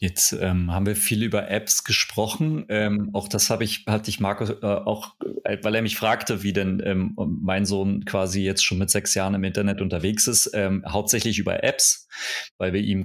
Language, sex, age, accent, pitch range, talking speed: German, male, 30-49, German, 100-125 Hz, 200 wpm